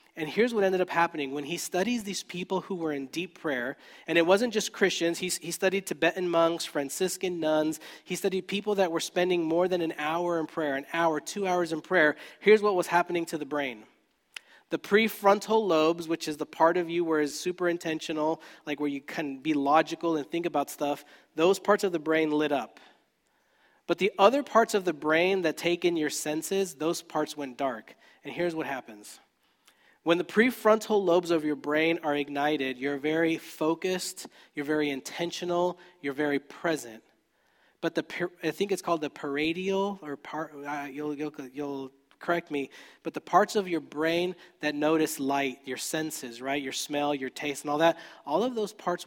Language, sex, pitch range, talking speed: English, male, 150-185 Hz, 195 wpm